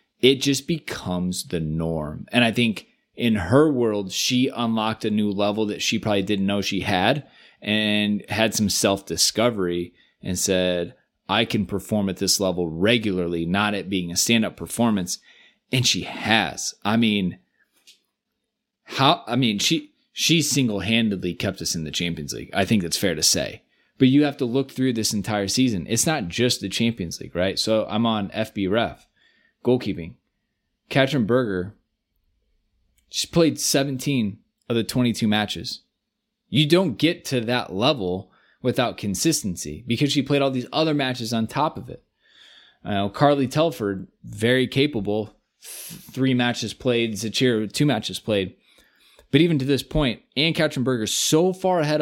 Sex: male